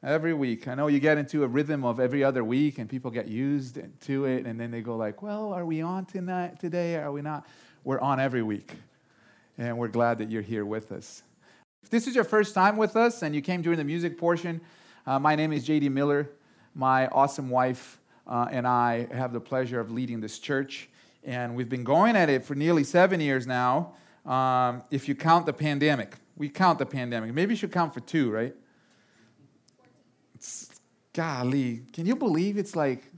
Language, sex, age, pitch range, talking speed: English, male, 40-59, 130-175 Hz, 205 wpm